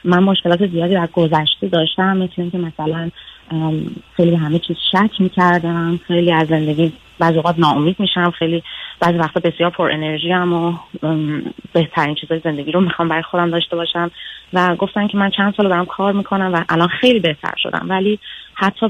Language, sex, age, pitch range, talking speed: Persian, female, 30-49, 160-185 Hz, 175 wpm